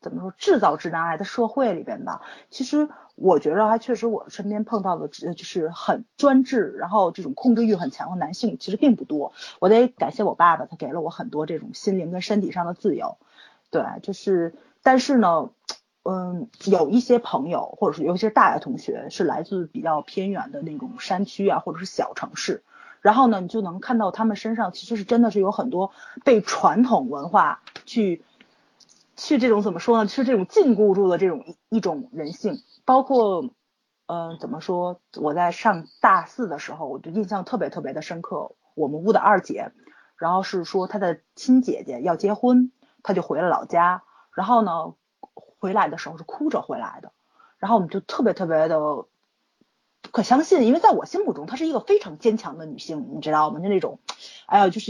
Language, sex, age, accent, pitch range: Chinese, female, 30-49, native, 185-250 Hz